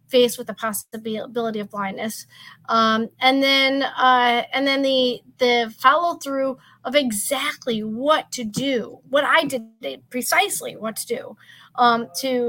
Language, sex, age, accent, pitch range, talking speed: English, female, 40-59, American, 235-300 Hz, 145 wpm